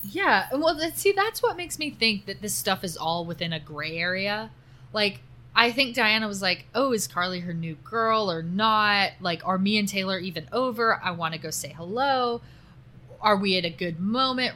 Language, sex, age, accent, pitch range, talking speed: English, female, 20-39, American, 160-220 Hz, 205 wpm